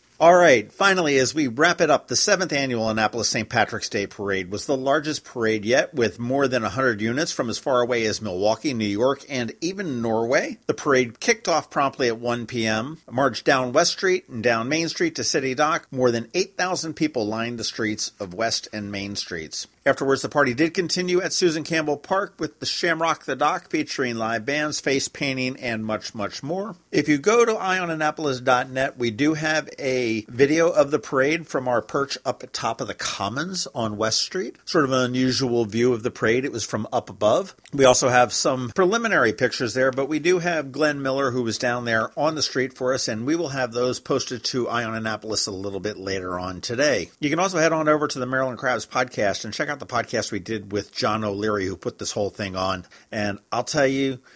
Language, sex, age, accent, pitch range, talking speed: English, male, 50-69, American, 110-145 Hz, 215 wpm